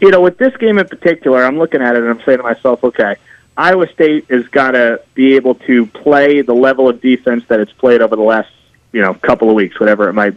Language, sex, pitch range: English, male, 120-150 Hz